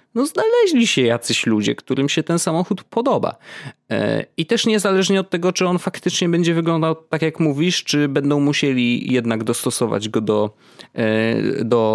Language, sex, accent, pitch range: Polish, male, native, 105-140 Hz